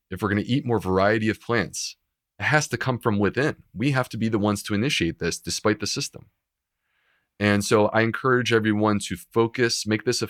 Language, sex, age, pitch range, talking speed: English, male, 30-49, 95-115 Hz, 215 wpm